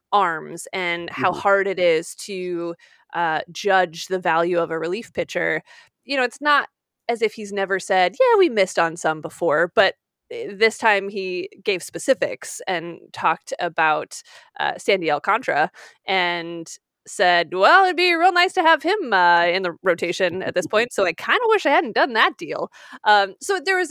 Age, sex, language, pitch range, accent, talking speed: 20-39, female, English, 185-310 Hz, American, 185 wpm